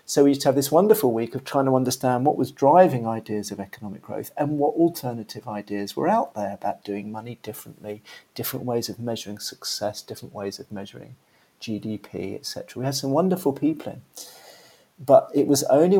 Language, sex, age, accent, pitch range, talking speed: English, male, 40-59, British, 115-145 Hz, 190 wpm